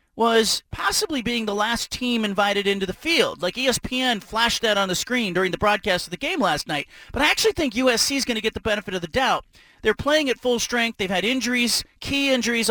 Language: English